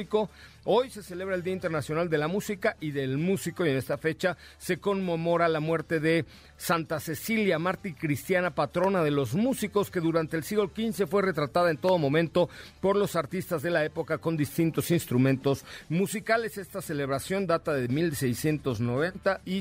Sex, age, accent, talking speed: male, 50-69, Mexican, 170 wpm